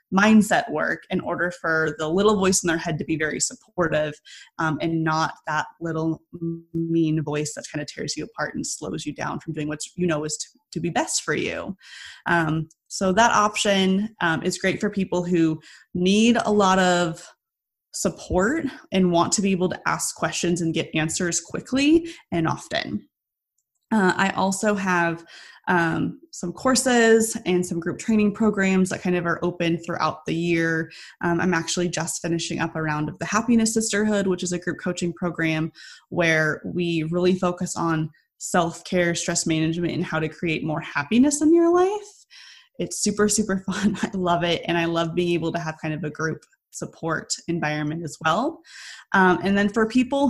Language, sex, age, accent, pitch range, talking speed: English, female, 20-39, American, 165-205 Hz, 185 wpm